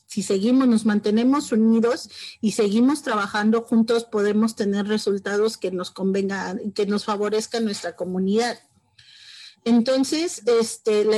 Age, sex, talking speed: 40-59, female, 115 wpm